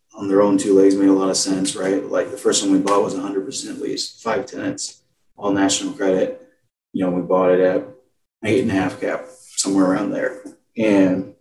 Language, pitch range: English, 95-110 Hz